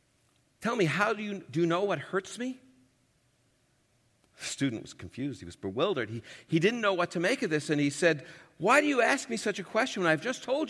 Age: 50-69